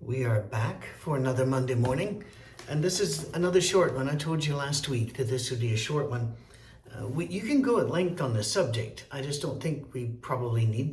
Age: 60-79